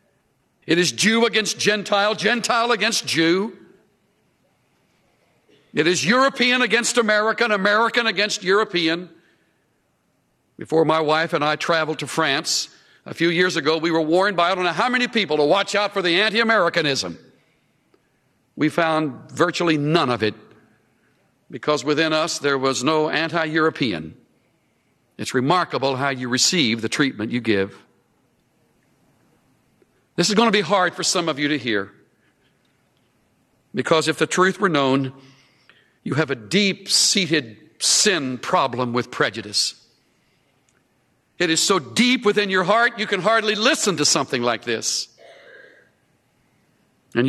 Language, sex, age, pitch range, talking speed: English, male, 60-79, 130-190 Hz, 135 wpm